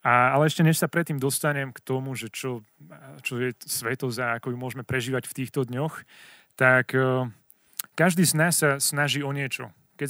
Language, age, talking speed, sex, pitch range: Slovak, 30-49, 190 wpm, male, 125-155 Hz